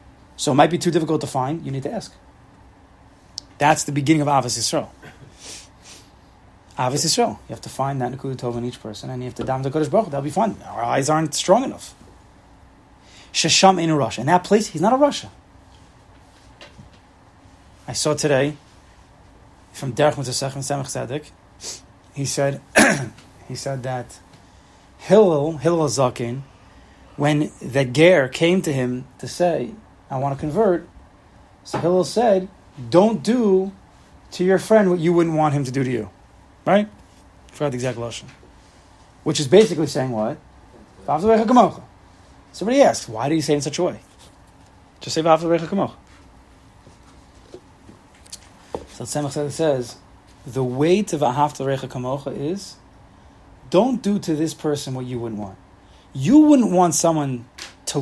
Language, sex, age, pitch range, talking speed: English, male, 30-49, 95-160 Hz, 150 wpm